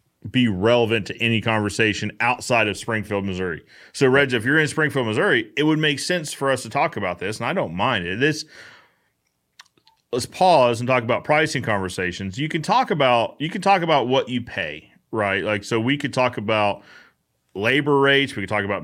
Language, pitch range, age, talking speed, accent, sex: English, 100-140 Hz, 30-49, 200 wpm, American, male